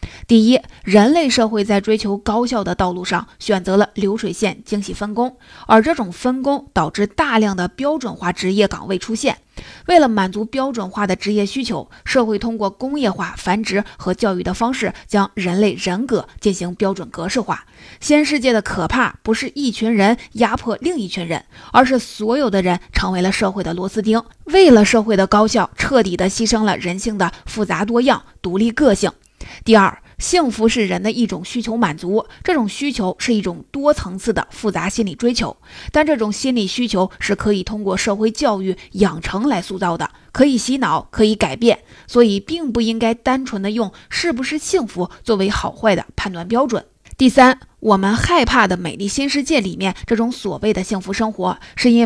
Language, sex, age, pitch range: Chinese, female, 20-39, 195-240 Hz